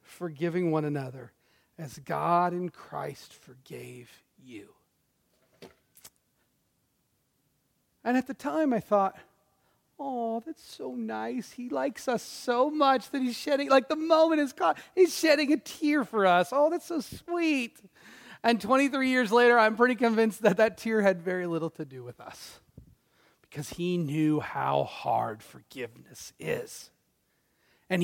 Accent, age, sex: American, 40-59, male